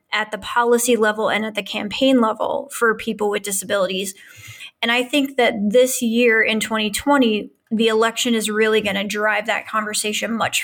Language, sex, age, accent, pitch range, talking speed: English, female, 20-39, American, 210-235 Hz, 170 wpm